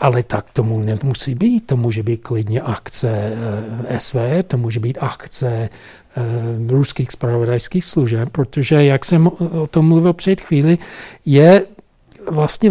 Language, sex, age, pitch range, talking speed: Czech, male, 60-79, 125-185 Hz, 135 wpm